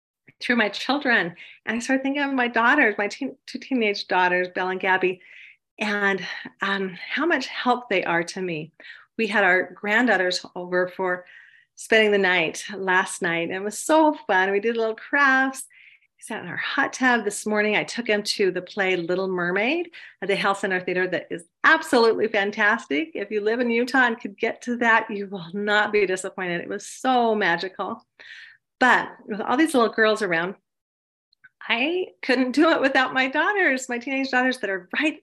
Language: English